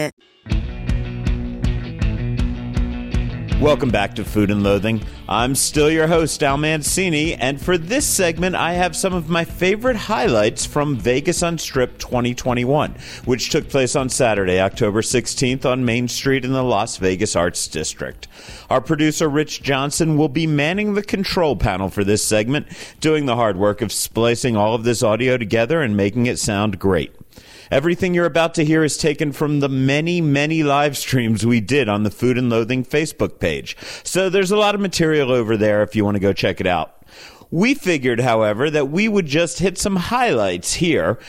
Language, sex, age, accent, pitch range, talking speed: English, male, 40-59, American, 110-160 Hz, 175 wpm